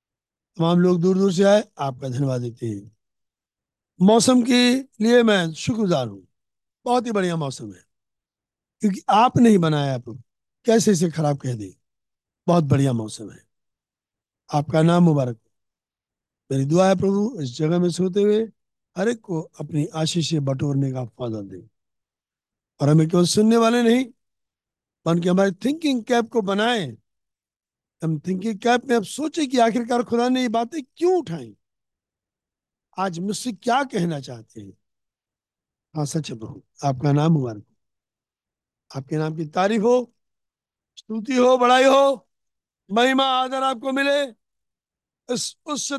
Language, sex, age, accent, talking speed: Hindi, male, 60-79, native, 135 wpm